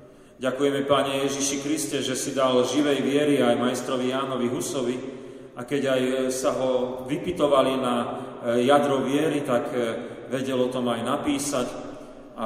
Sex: male